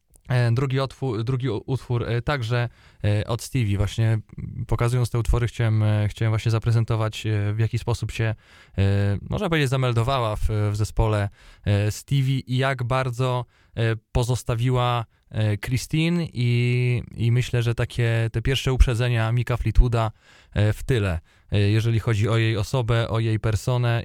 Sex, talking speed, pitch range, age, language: male, 125 wpm, 110-125 Hz, 20-39, Polish